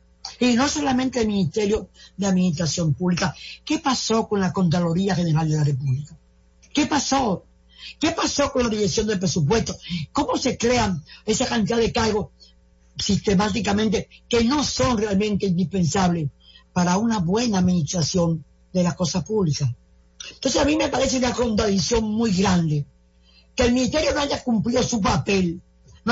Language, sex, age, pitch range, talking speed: English, female, 50-69, 165-240 Hz, 150 wpm